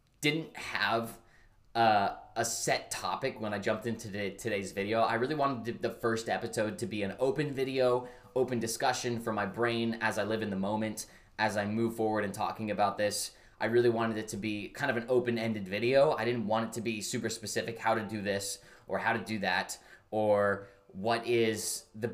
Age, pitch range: 20-39, 105-120 Hz